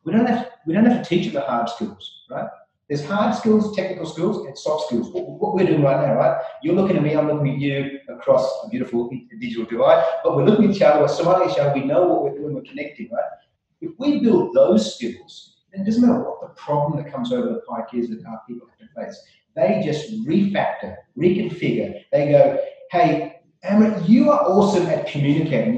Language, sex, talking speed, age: English, male, 225 wpm, 30-49